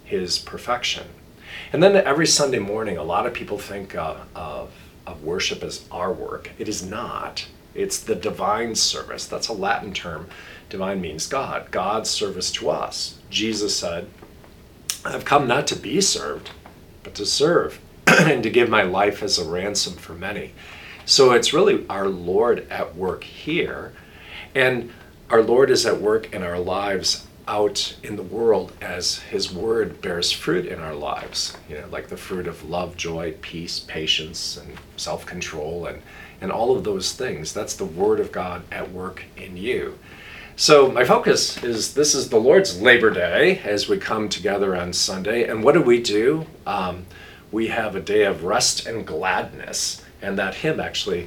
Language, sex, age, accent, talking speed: English, male, 40-59, American, 170 wpm